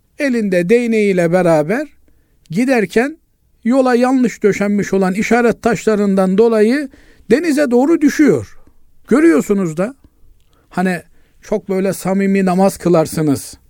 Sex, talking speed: male, 95 wpm